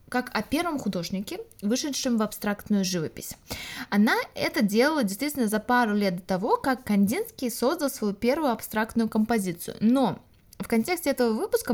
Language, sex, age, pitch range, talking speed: Russian, female, 20-39, 205-260 Hz, 150 wpm